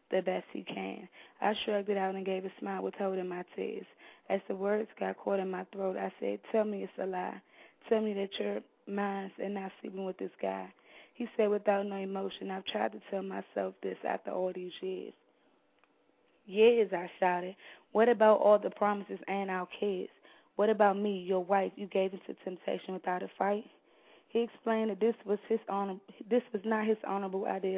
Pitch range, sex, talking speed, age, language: 190-210 Hz, female, 205 wpm, 20-39, English